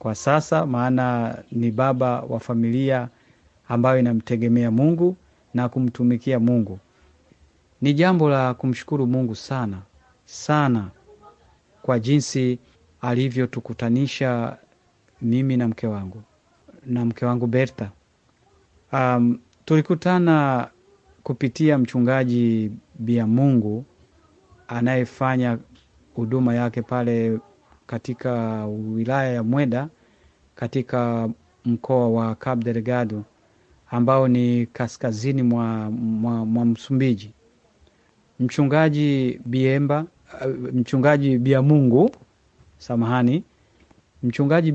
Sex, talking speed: male, 85 wpm